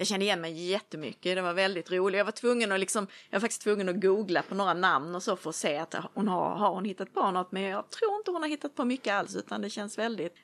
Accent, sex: native, female